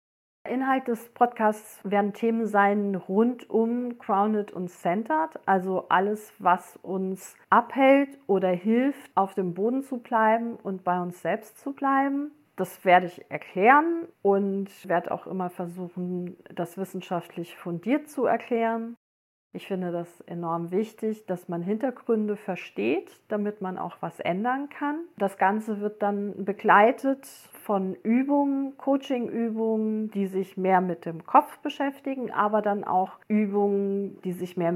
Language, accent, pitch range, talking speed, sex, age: German, German, 185-230 Hz, 135 wpm, female, 40-59